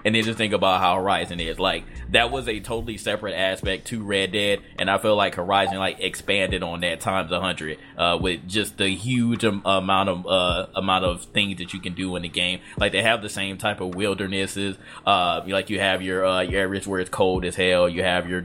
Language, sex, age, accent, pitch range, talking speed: English, male, 20-39, American, 90-100 Hz, 230 wpm